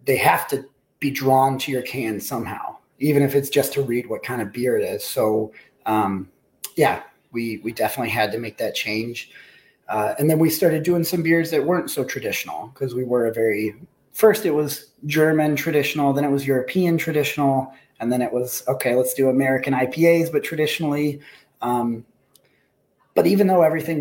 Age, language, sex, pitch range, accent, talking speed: 30-49, English, male, 120-140 Hz, American, 185 wpm